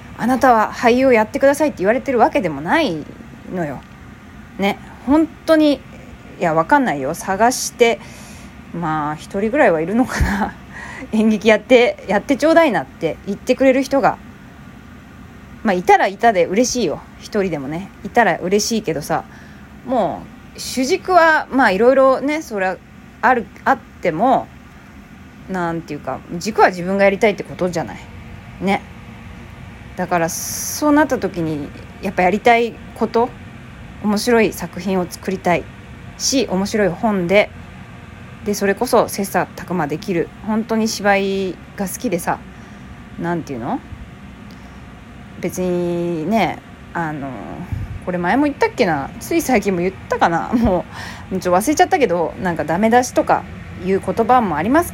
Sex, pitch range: female, 180-255 Hz